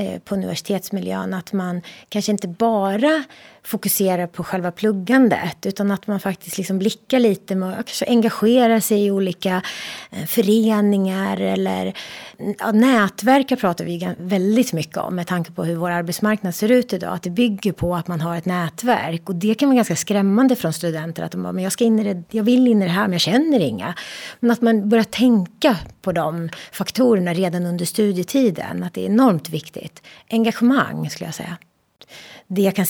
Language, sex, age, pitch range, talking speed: Swedish, female, 30-49, 170-220 Hz, 180 wpm